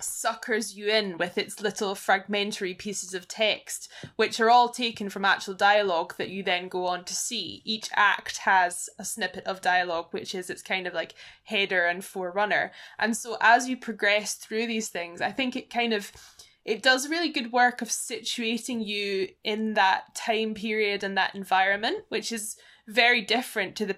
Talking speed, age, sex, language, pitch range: 185 wpm, 10-29, female, English, 190-230 Hz